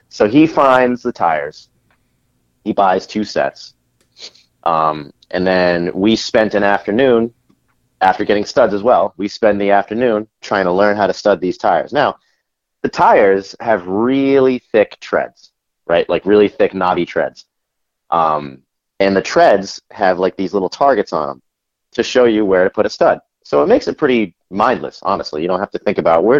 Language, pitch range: English, 95-130 Hz